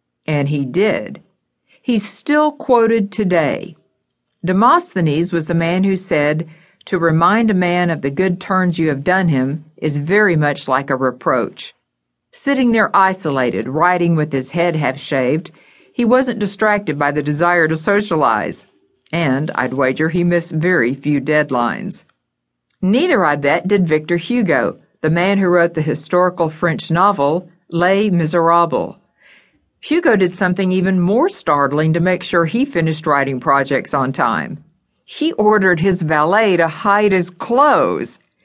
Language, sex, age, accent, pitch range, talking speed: English, female, 50-69, American, 155-205 Hz, 145 wpm